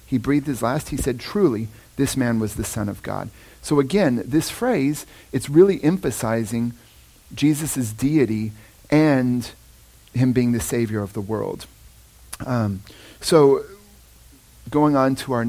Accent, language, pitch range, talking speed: American, English, 110-135 Hz, 145 wpm